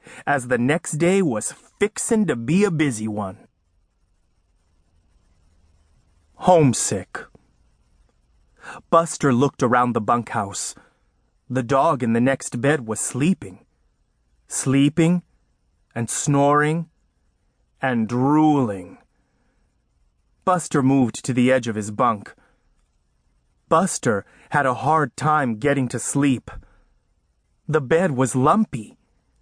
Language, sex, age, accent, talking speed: English, male, 30-49, American, 100 wpm